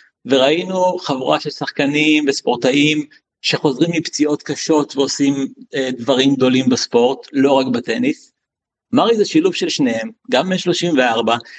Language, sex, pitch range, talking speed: Hebrew, male, 130-165 Hz, 120 wpm